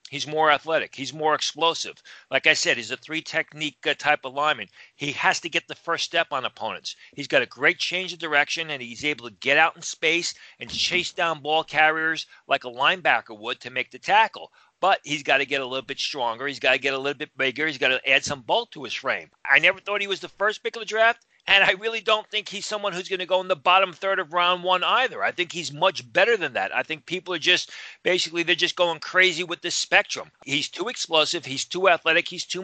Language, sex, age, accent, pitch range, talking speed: English, male, 40-59, American, 145-180 Hz, 250 wpm